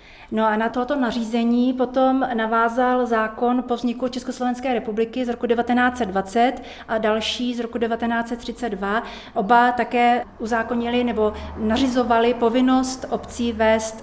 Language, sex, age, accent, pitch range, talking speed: Czech, female, 30-49, native, 210-235 Hz, 120 wpm